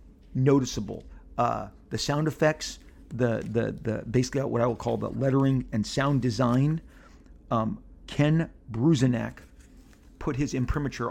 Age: 40-59